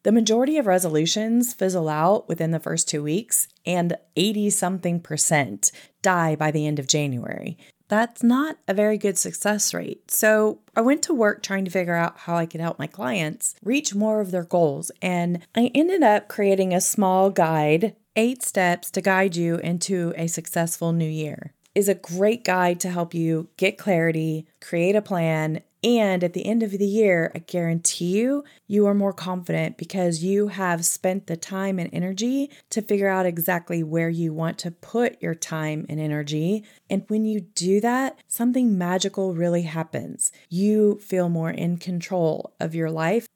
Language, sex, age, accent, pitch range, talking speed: English, female, 30-49, American, 165-210 Hz, 180 wpm